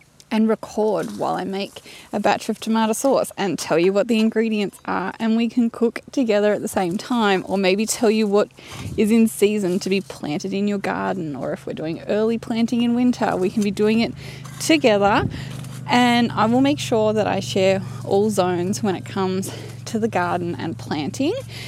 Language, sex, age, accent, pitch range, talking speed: English, female, 20-39, Australian, 195-240 Hz, 200 wpm